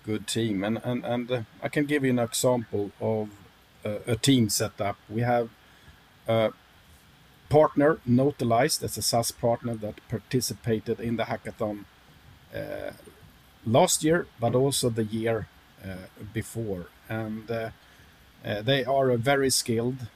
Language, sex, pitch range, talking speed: English, male, 105-125 Hz, 145 wpm